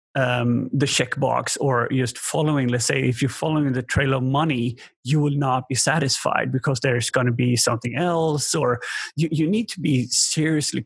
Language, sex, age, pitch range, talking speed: English, male, 30-49, 130-150 Hz, 190 wpm